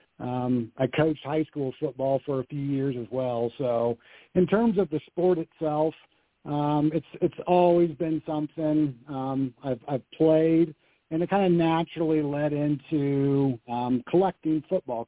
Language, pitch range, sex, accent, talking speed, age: English, 135-165 Hz, male, American, 155 wpm, 60-79